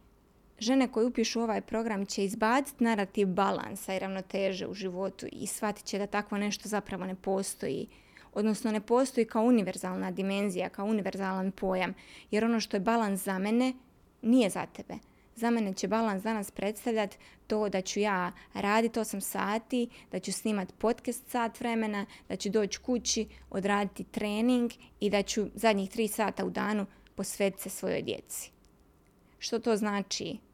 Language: Croatian